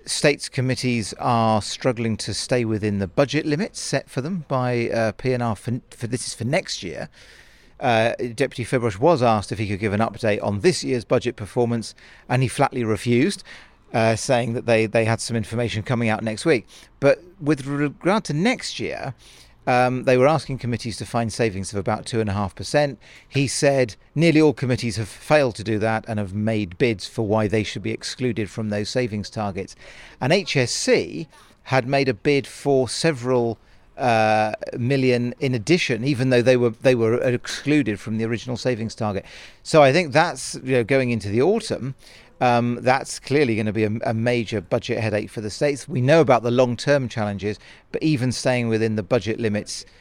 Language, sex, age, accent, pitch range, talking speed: English, male, 40-59, British, 110-130 Hz, 195 wpm